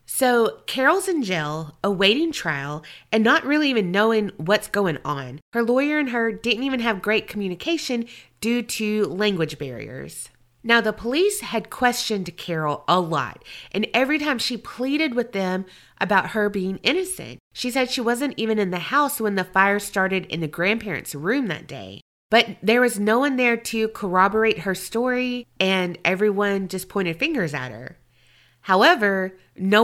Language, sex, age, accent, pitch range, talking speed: English, female, 30-49, American, 180-235 Hz, 165 wpm